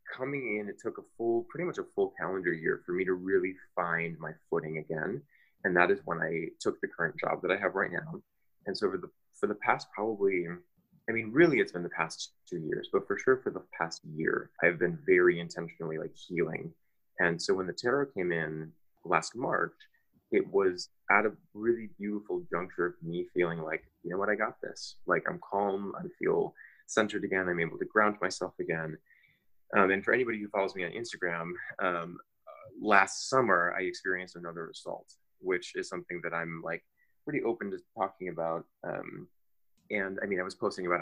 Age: 20-39